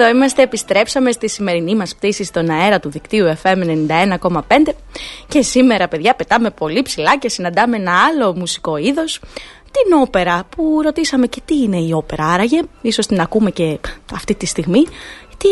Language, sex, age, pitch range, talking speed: Greek, female, 20-39, 185-260 Hz, 165 wpm